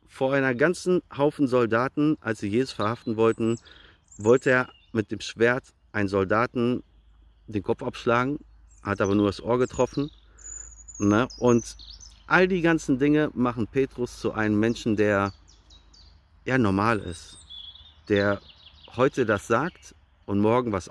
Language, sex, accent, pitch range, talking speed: German, male, German, 90-125 Hz, 130 wpm